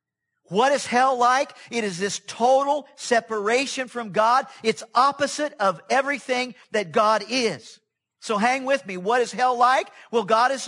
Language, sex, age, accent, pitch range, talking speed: English, male, 50-69, American, 210-260 Hz, 165 wpm